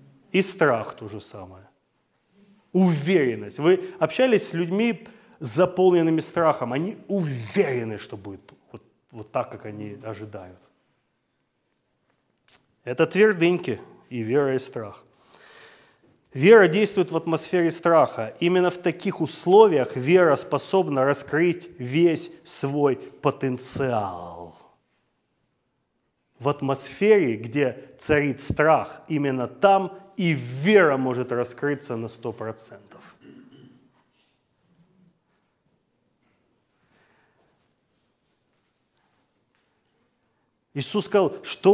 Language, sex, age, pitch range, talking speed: Russian, male, 30-49, 125-175 Hz, 85 wpm